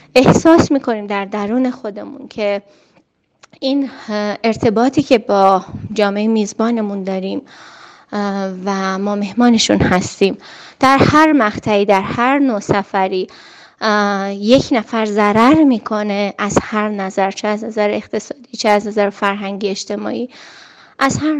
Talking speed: 120 wpm